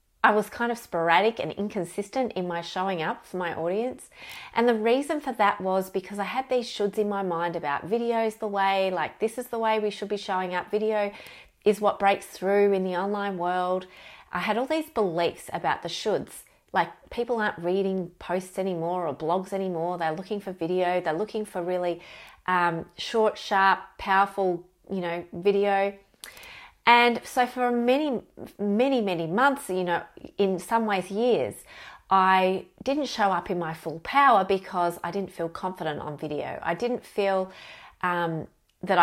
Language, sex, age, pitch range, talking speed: English, female, 30-49, 175-220 Hz, 180 wpm